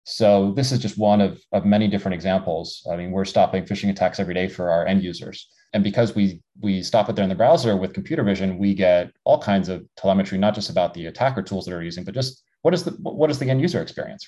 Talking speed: 255 wpm